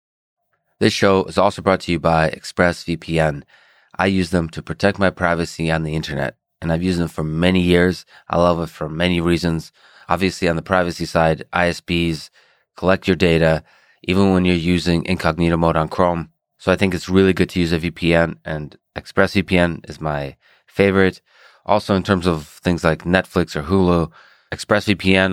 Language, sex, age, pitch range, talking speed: English, male, 30-49, 80-95 Hz, 175 wpm